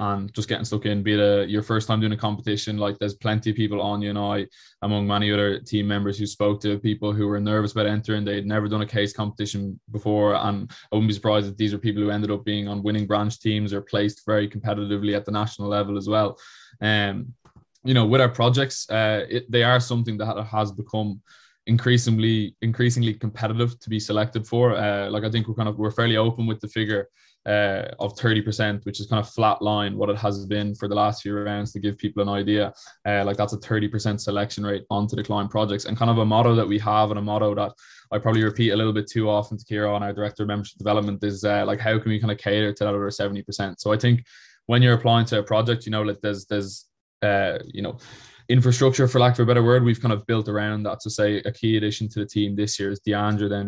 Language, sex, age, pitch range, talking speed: English, male, 20-39, 105-110 Hz, 255 wpm